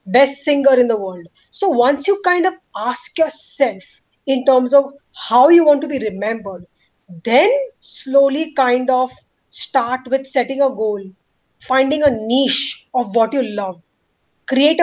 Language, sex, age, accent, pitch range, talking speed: English, female, 20-39, Indian, 240-300 Hz, 155 wpm